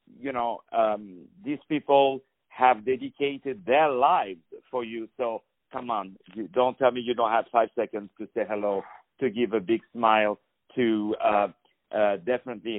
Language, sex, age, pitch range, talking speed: English, male, 50-69, 110-145 Hz, 160 wpm